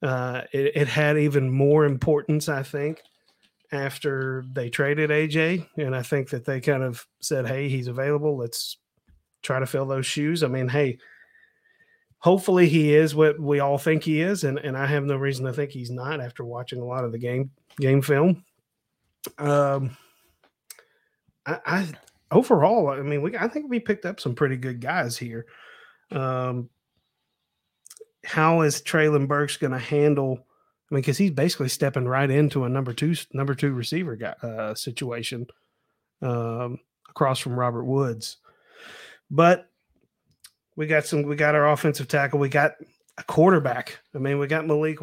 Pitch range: 130-155 Hz